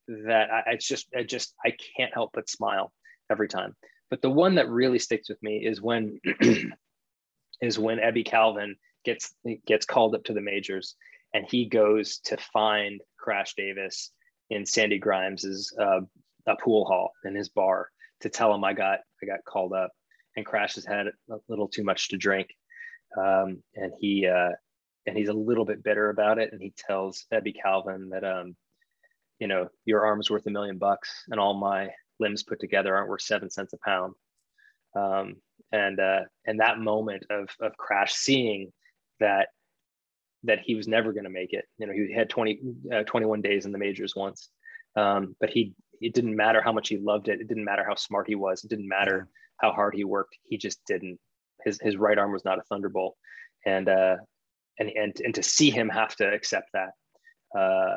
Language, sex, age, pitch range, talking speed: English, male, 20-39, 100-115 Hz, 195 wpm